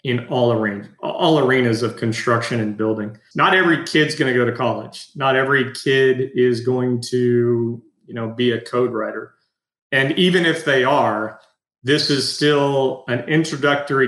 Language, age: English, 40-59